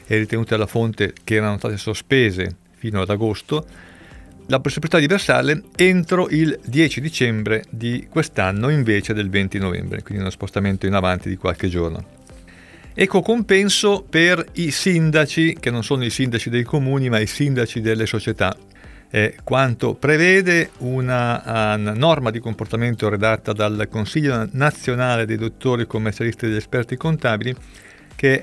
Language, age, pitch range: Italian, 40-59, 110-140 Hz